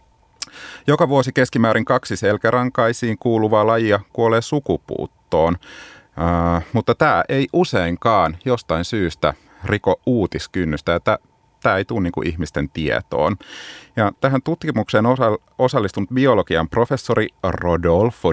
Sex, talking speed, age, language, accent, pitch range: male, 110 wpm, 30-49, Finnish, native, 90-130 Hz